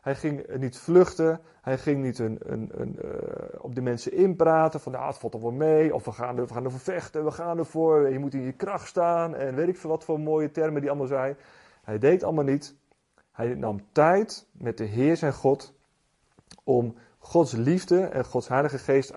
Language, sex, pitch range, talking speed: Dutch, male, 115-160 Hz, 215 wpm